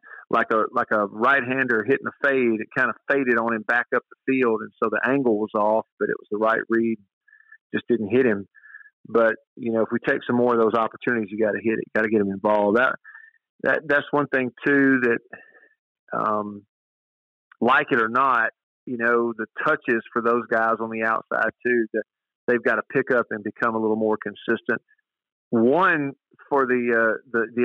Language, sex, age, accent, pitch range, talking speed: English, male, 40-59, American, 115-140 Hz, 210 wpm